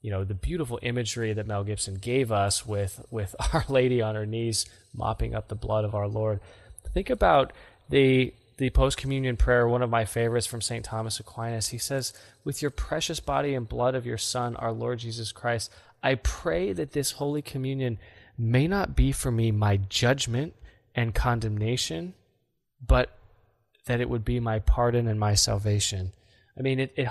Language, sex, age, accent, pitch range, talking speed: English, male, 20-39, American, 110-130 Hz, 180 wpm